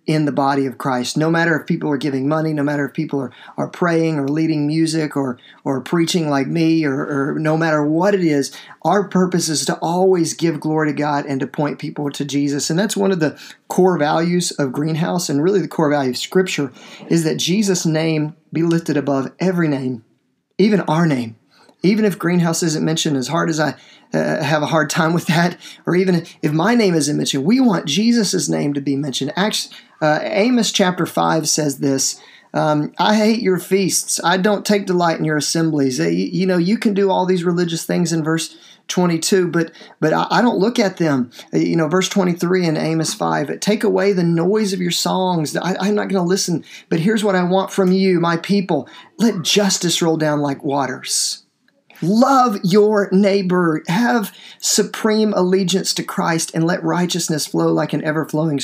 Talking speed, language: 205 wpm, English